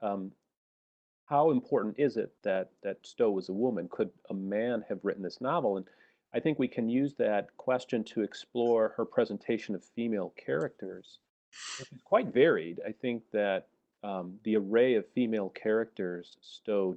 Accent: American